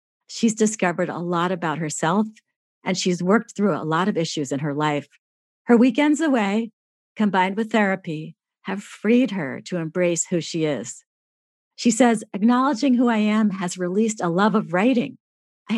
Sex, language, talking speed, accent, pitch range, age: female, English, 165 wpm, American, 170-225 Hz, 50-69